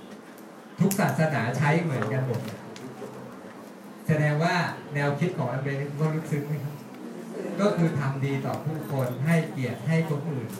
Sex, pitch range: male, 135-170 Hz